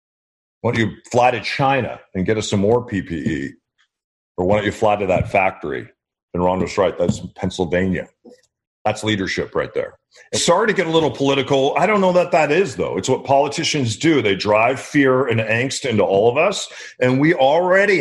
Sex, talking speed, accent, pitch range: male, 195 wpm, American, 110-160 Hz